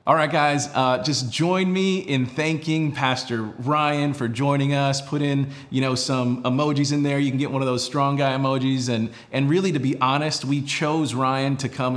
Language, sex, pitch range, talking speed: English, male, 125-155 Hz, 210 wpm